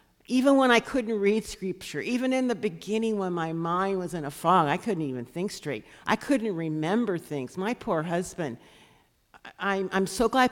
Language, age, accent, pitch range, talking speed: English, 50-69, American, 145-200 Hz, 185 wpm